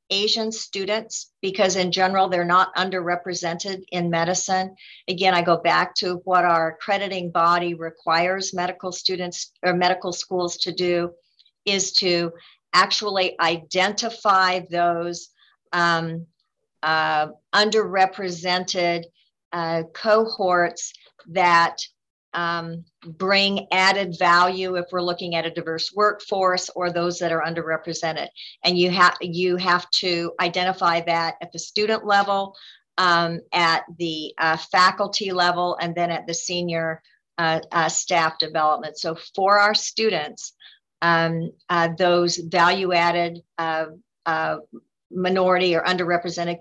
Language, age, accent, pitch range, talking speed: English, 50-69, American, 170-185 Hz, 120 wpm